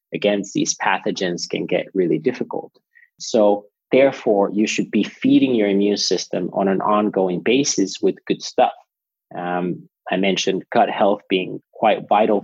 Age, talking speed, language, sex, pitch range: 30-49, 150 wpm, English, male, 95-110 Hz